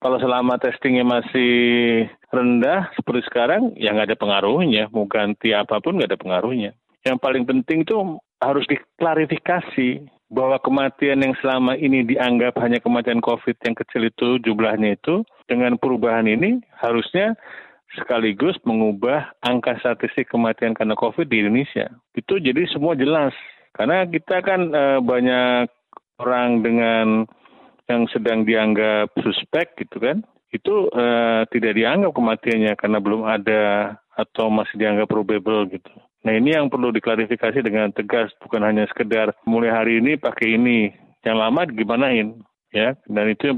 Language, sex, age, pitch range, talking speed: Indonesian, male, 40-59, 110-130 Hz, 135 wpm